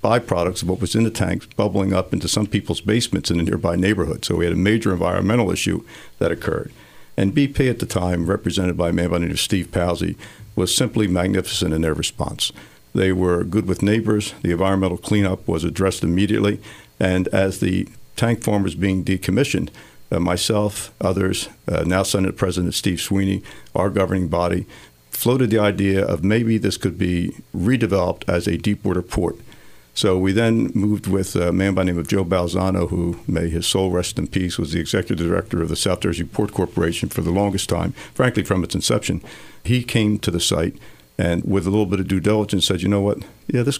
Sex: male